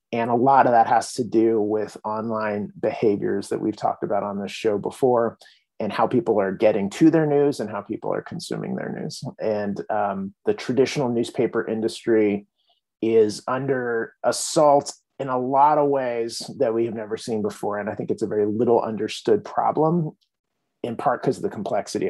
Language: English